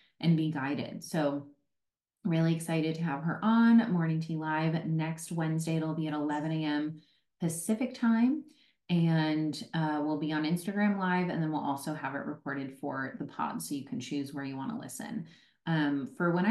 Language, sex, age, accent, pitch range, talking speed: English, female, 30-49, American, 150-180 Hz, 180 wpm